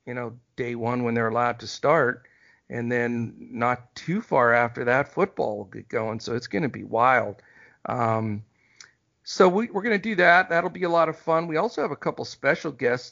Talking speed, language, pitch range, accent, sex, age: 215 wpm, English, 120-145 Hz, American, male, 50-69